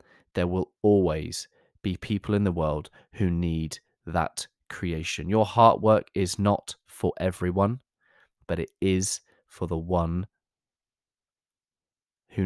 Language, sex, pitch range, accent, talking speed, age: English, male, 85-100 Hz, British, 125 wpm, 20-39